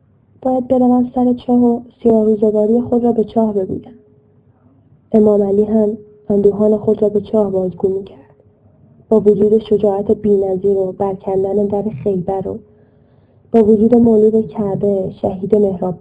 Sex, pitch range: female, 185-225 Hz